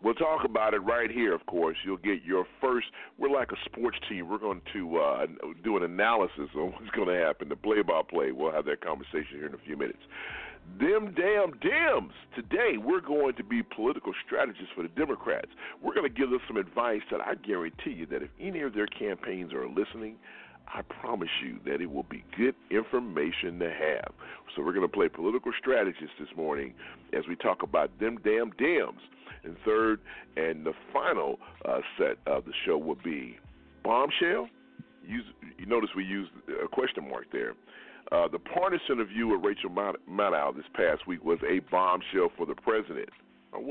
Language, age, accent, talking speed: English, 40-59, American, 190 wpm